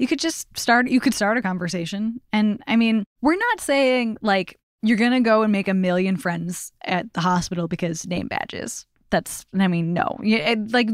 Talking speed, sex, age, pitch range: 200 wpm, female, 10-29, 185-245 Hz